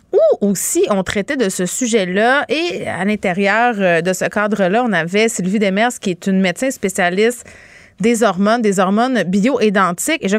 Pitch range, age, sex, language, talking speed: 190-255 Hz, 30-49, female, French, 170 wpm